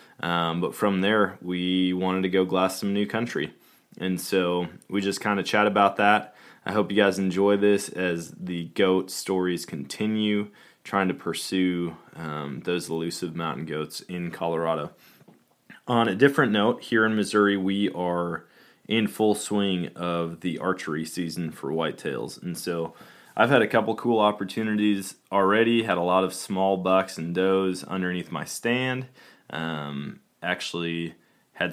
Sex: male